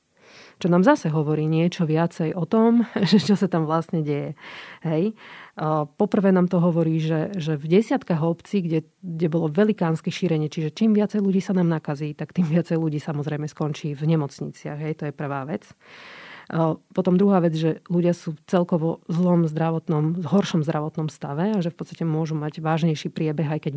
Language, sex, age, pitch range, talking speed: Slovak, female, 40-59, 155-180 Hz, 180 wpm